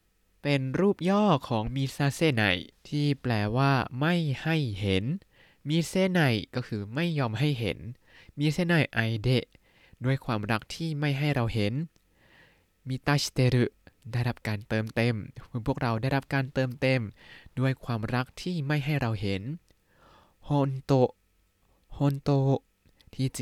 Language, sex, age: Thai, male, 20-39